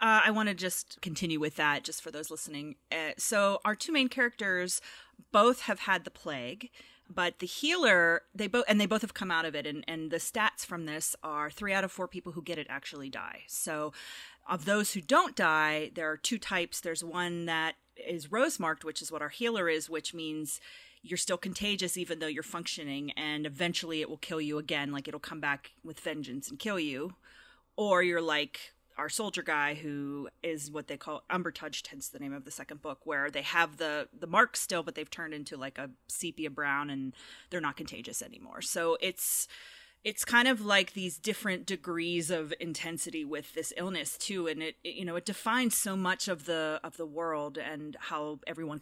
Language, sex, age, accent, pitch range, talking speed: English, female, 30-49, American, 155-215 Hz, 210 wpm